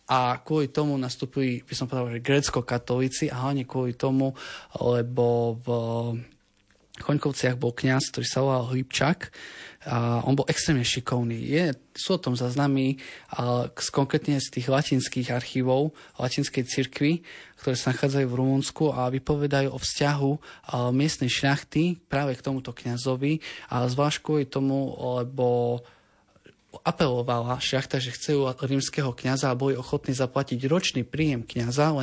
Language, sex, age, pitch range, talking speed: Slovak, male, 20-39, 125-145 Hz, 135 wpm